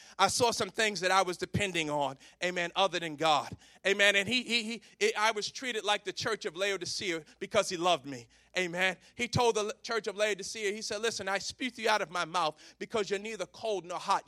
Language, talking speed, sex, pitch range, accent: English, 225 wpm, male, 185-230 Hz, American